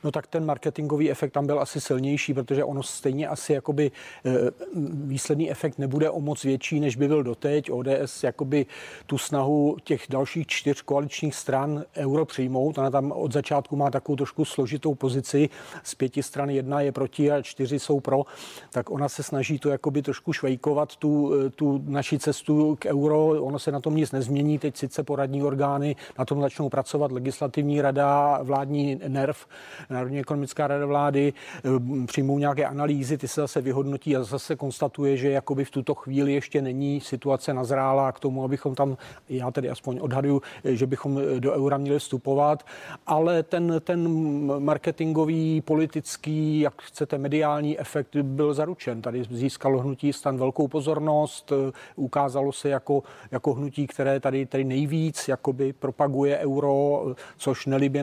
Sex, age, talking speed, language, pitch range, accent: male, 40-59, 160 wpm, Czech, 135-150 Hz, native